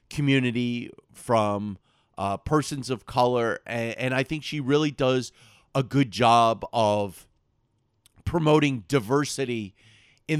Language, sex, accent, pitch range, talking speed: English, male, American, 110-135 Hz, 115 wpm